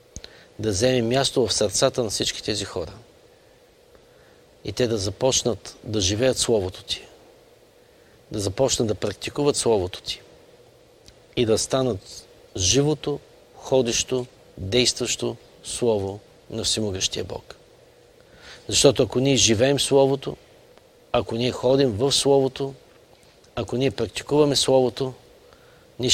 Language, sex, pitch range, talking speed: Bulgarian, male, 120-145 Hz, 110 wpm